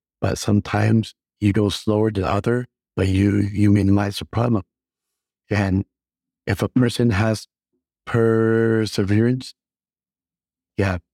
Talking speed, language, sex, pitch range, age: 110 wpm, English, male, 95-110 Hz, 60-79